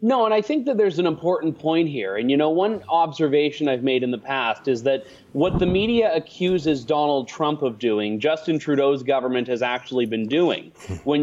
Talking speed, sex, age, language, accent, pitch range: 205 wpm, male, 30-49, English, American, 140-175 Hz